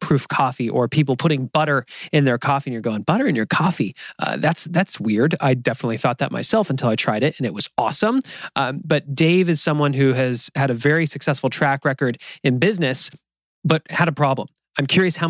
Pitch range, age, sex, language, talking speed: 130-155 Hz, 30-49, male, English, 215 wpm